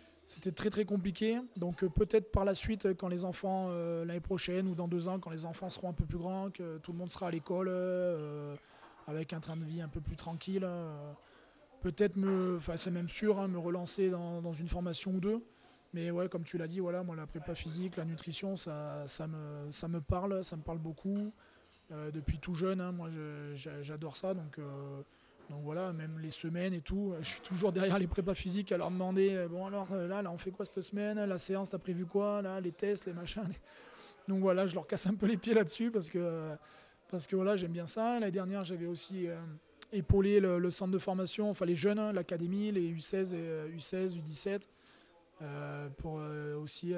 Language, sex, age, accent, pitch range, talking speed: French, male, 20-39, French, 160-190 Hz, 225 wpm